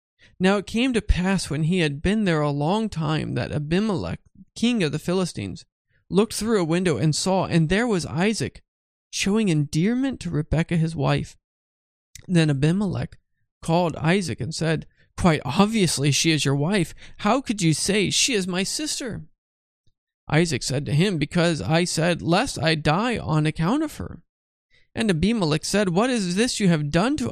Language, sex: English, male